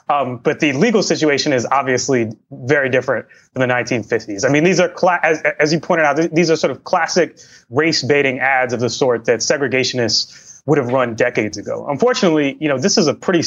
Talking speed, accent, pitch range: 210 wpm, American, 130-165 Hz